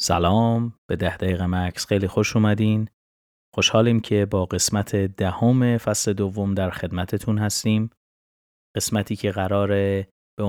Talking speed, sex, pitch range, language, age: 130 wpm, male, 90-105 Hz, Persian, 30-49